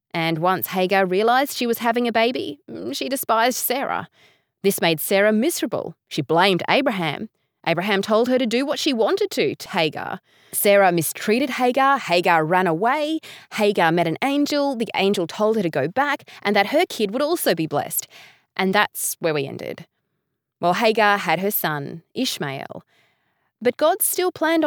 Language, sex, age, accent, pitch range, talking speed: English, female, 20-39, Australian, 165-250 Hz, 170 wpm